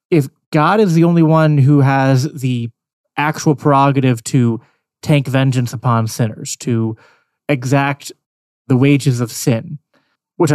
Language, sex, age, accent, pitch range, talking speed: English, male, 20-39, American, 120-150 Hz, 130 wpm